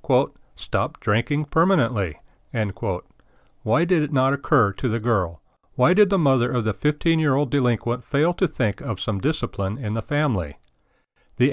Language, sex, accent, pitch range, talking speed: English, male, American, 110-145 Hz, 175 wpm